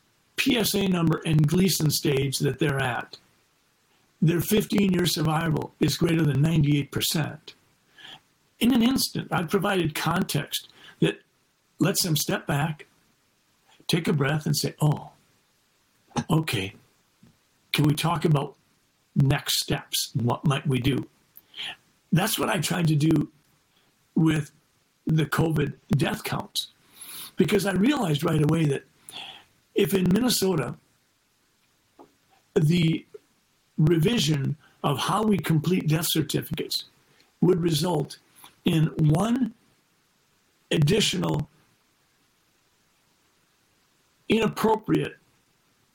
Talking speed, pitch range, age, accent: 100 wpm, 150-185 Hz, 60-79, American